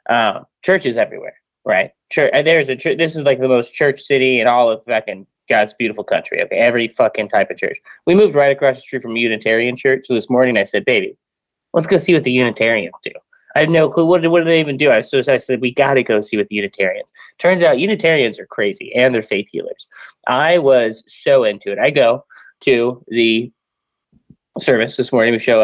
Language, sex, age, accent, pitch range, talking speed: English, male, 20-39, American, 120-175 Hz, 225 wpm